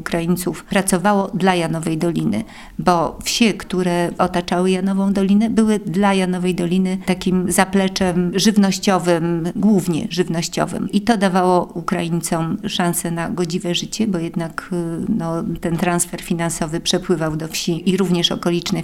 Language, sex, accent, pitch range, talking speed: Polish, female, native, 175-200 Hz, 125 wpm